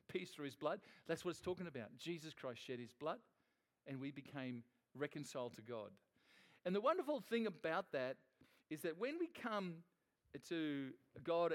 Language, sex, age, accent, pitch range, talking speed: English, male, 50-69, Australian, 140-195 Hz, 170 wpm